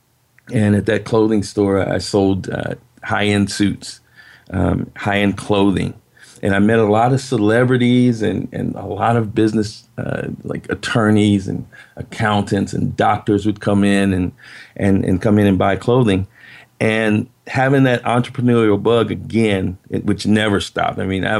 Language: English